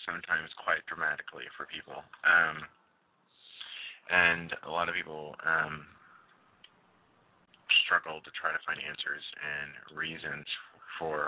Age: 30-49